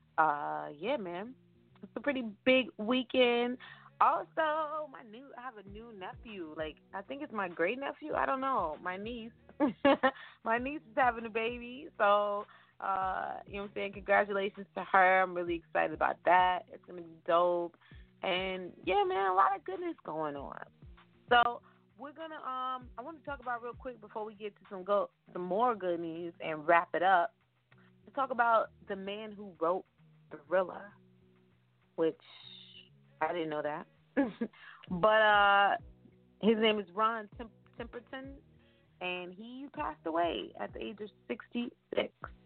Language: English